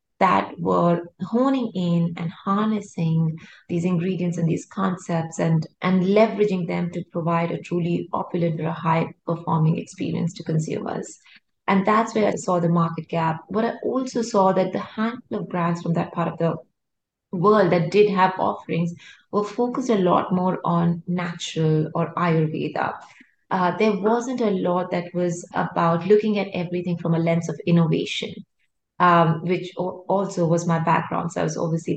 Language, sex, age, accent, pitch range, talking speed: English, female, 30-49, Indian, 170-200 Hz, 165 wpm